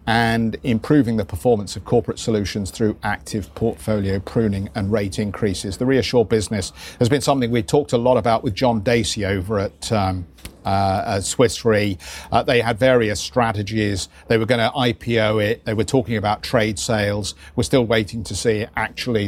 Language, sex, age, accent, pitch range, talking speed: English, male, 50-69, British, 105-120 Hz, 180 wpm